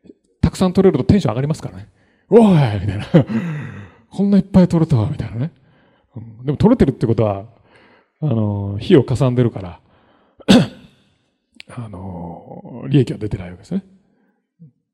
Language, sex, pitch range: Japanese, male, 115-170 Hz